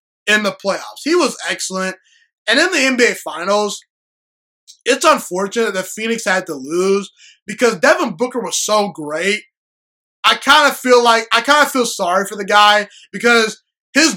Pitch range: 190-245 Hz